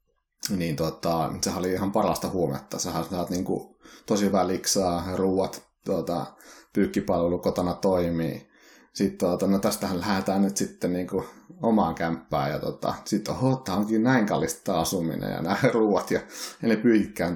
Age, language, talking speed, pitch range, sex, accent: 30-49, Finnish, 130 wpm, 80-95 Hz, male, native